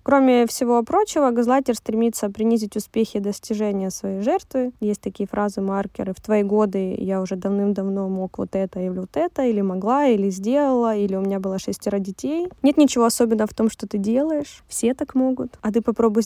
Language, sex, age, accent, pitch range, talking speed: Russian, female, 20-39, native, 210-245 Hz, 185 wpm